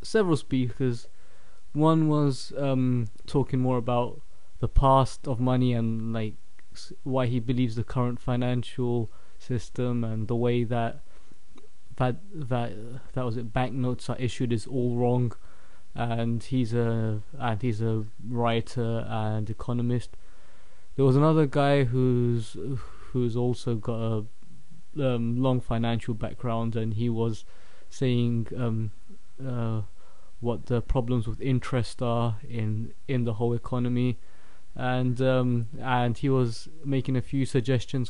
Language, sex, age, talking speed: English, male, 20-39, 135 wpm